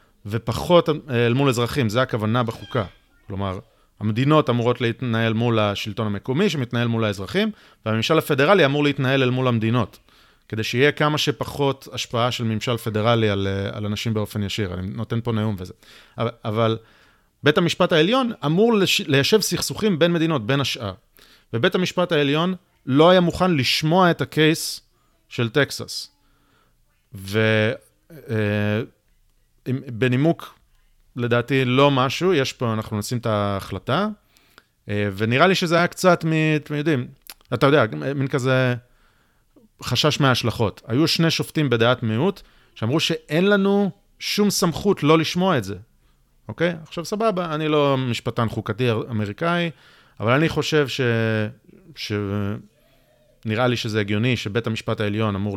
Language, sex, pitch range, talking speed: Hebrew, male, 110-155 Hz, 135 wpm